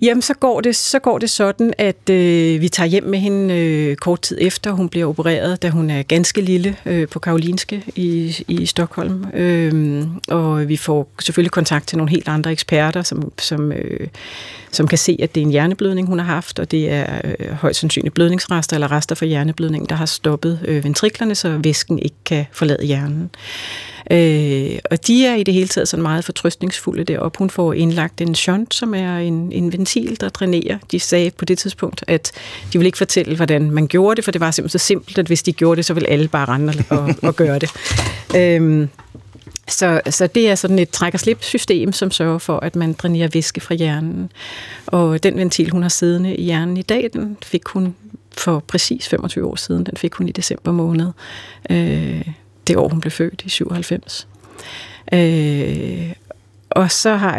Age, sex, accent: 40-59, female, native